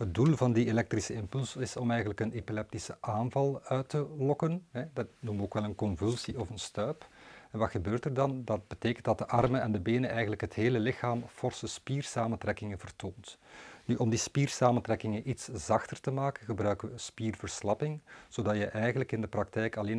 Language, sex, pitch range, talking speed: Dutch, male, 105-125 Hz, 190 wpm